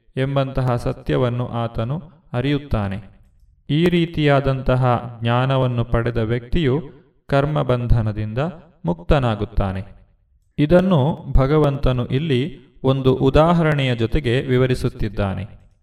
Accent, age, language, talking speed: native, 30-49, Kannada, 70 wpm